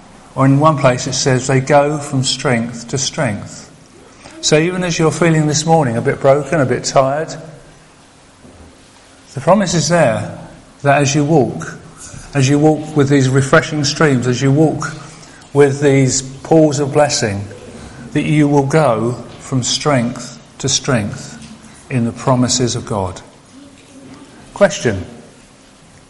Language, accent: English, British